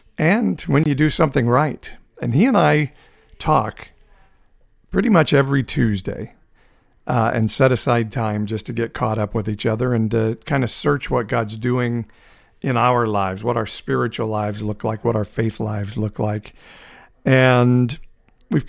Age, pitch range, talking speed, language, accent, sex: 50-69, 110-125 Hz, 170 wpm, English, American, male